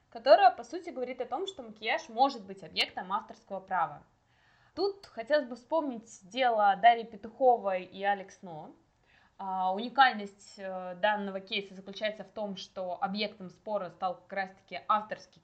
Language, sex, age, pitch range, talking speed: Russian, female, 20-39, 185-245 Hz, 140 wpm